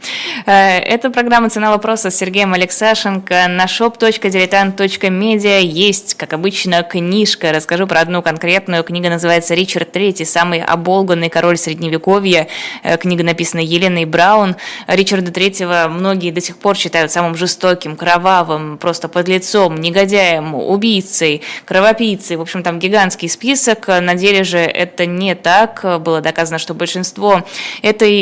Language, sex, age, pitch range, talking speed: Russian, female, 20-39, 170-195 Hz, 130 wpm